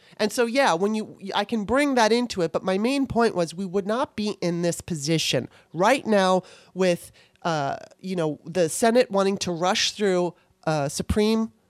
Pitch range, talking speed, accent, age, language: 175-220 Hz, 190 wpm, American, 30-49, English